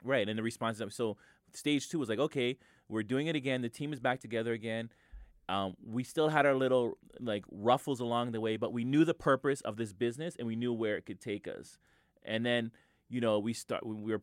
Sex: male